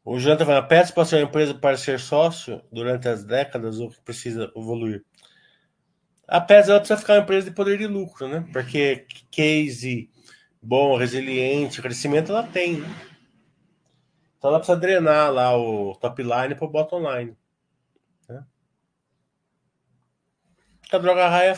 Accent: Brazilian